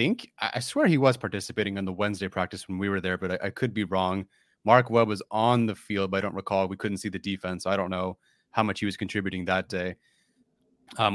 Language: English